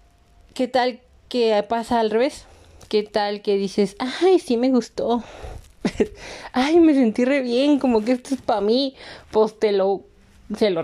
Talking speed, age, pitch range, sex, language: 160 wpm, 30-49, 185-255 Hz, female, Spanish